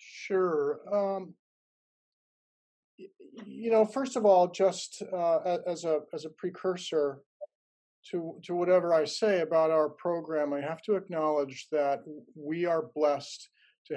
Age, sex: 40-59, male